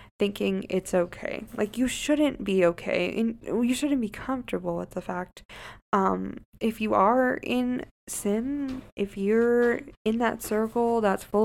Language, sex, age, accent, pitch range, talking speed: English, female, 20-39, American, 185-215 Hz, 150 wpm